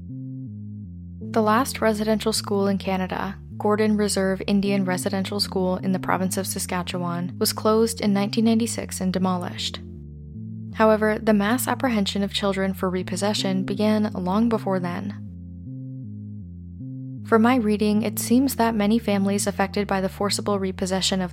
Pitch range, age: 170-215 Hz, 20-39